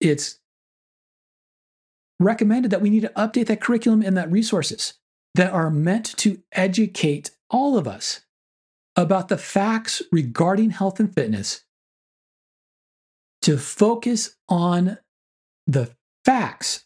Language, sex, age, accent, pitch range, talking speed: English, male, 40-59, American, 140-185 Hz, 115 wpm